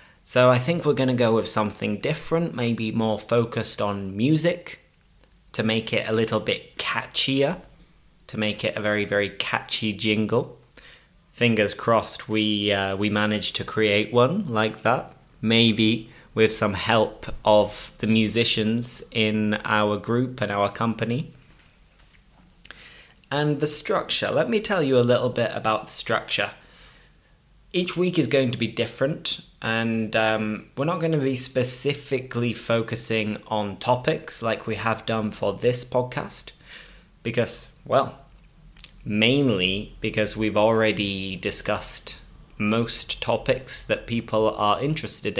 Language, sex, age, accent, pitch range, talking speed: English, male, 20-39, British, 110-130 Hz, 135 wpm